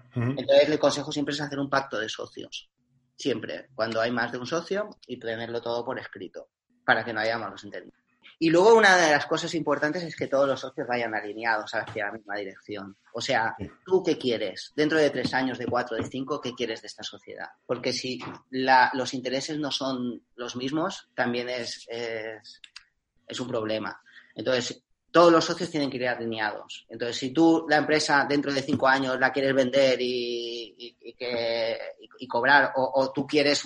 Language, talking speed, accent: Spanish, 190 wpm, Spanish